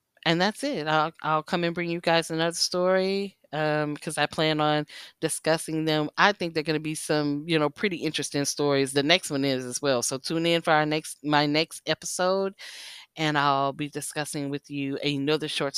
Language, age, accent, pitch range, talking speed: English, 10-29, American, 140-175 Hz, 205 wpm